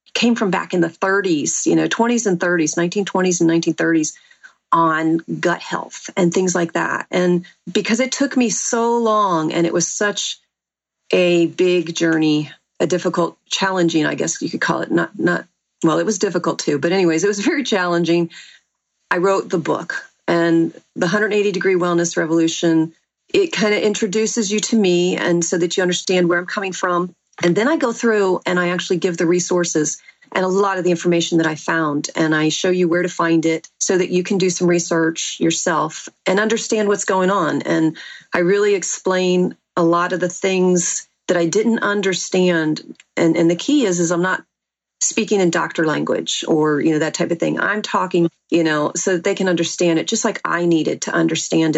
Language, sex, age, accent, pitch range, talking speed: English, female, 40-59, American, 170-200 Hz, 200 wpm